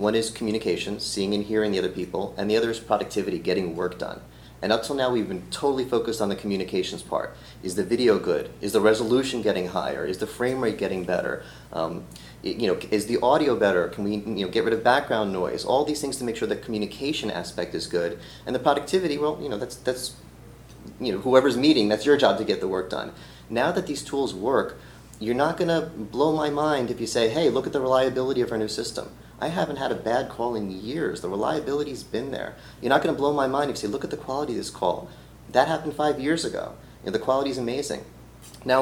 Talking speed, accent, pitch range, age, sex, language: 240 wpm, American, 105-140 Hz, 30-49, male, English